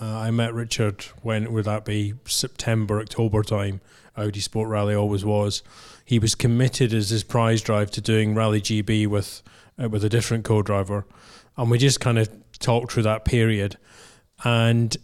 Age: 30-49